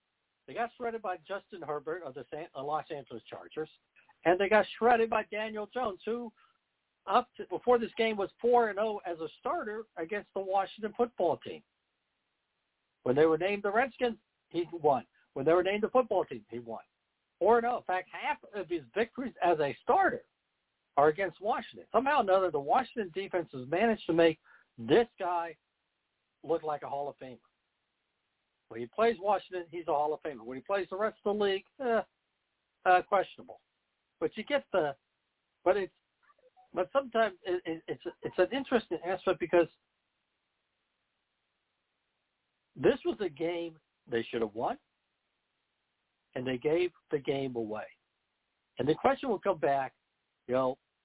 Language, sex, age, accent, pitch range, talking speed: English, male, 60-79, American, 160-225 Hz, 165 wpm